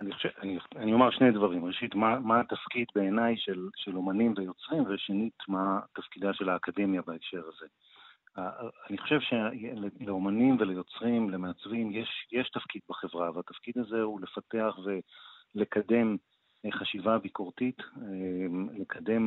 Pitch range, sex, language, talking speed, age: 95-115 Hz, male, Hebrew, 125 wpm, 40-59